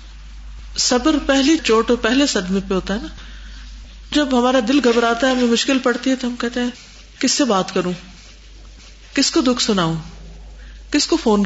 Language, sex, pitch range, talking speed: Urdu, female, 175-260 Hz, 175 wpm